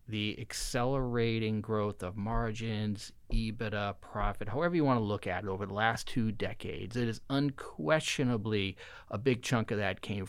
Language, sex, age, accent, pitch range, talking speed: English, male, 30-49, American, 100-120 Hz, 165 wpm